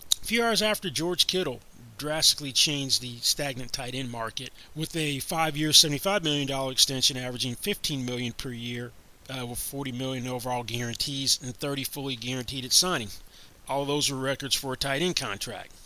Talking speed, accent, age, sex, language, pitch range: 175 wpm, American, 30-49, male, English, 125-155 Hz